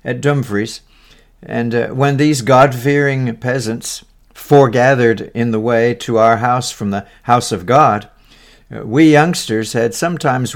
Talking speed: 135 wpm